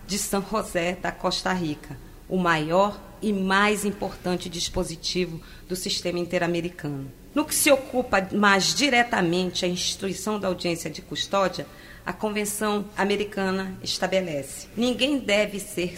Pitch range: 180-225 Hz